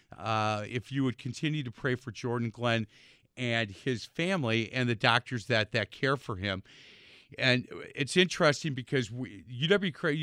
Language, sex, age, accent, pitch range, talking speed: English, male, 50-69, American, 110-135 Hz, 155 wpm